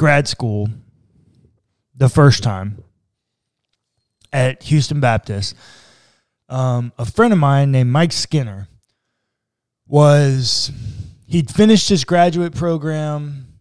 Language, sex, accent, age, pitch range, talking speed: English, male, American, 20-39, 115-150 Hz, 95 wpm